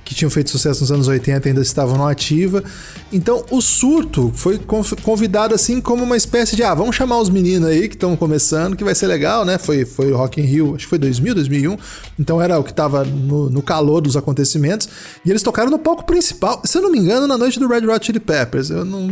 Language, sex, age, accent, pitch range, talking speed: Portuguese, male, 20-39, Brazilian, 155-225 Hz, 240 wpm